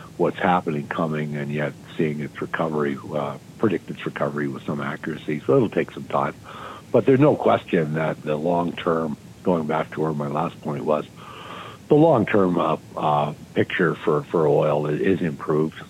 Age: 60-79